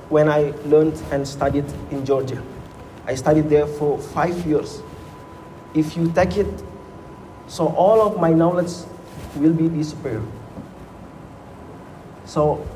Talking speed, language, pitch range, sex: 120 wpm, Indonesian, 140-165 Hz, male